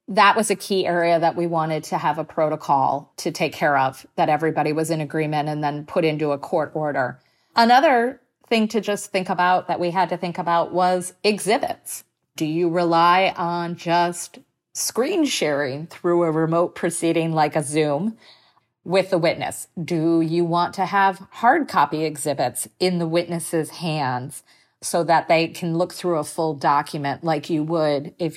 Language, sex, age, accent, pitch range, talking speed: English, female, 40-59, American, 160-210 Hz, 180 wpm